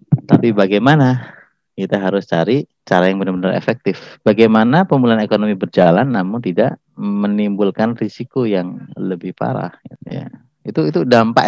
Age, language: 30-49, Indonesian